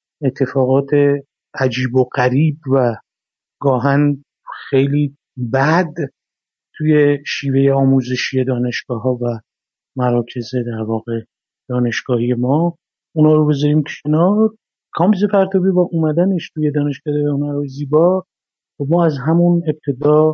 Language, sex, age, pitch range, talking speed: Persian, male, 50-69, 130-150 Hz, 105 wpm